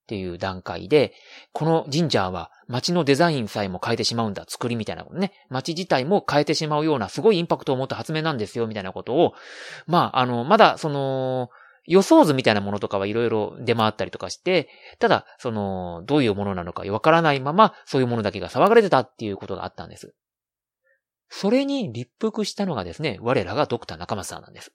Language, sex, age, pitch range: Japanese, male, 40-59, 105-170 Hz